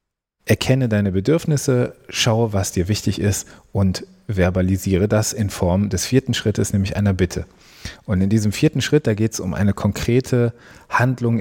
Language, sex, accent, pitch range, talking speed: German, male, German, 100-120 Hz, 165 wpm